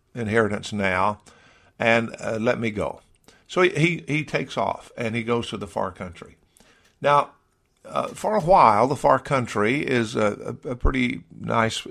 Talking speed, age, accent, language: 165 wpm, 50-69, American, English